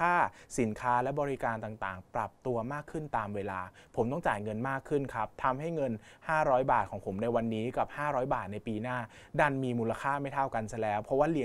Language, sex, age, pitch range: Thai, male, 20-39, 110-140 Hz